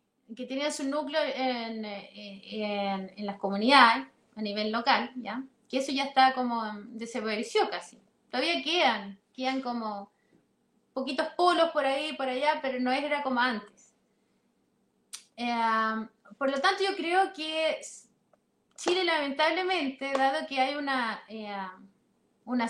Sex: female